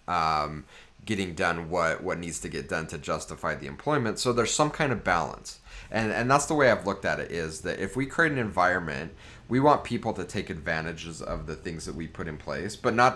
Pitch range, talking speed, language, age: 85-115 Hz, 235 wpm, English, 30-49